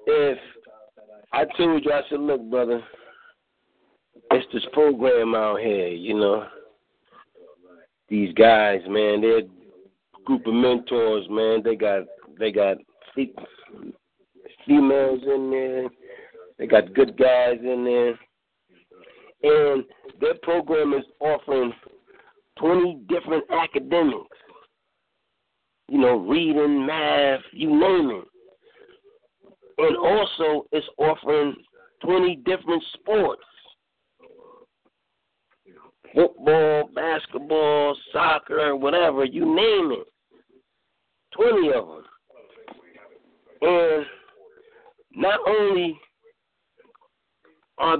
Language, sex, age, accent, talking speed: English, male, 50-69, American, 90 wpm